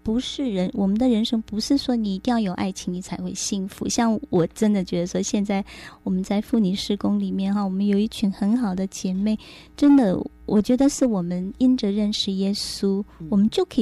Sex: female